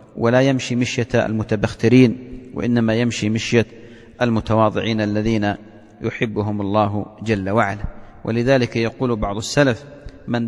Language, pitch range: English, 110-130 Hz